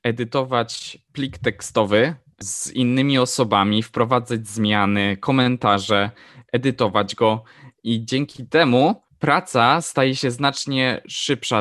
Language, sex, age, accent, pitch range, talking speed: Polish, male, 20-39, native, 115-140 Hz, 100 wpm